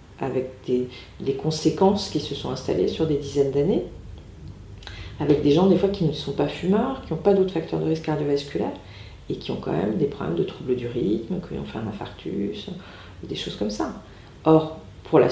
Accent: French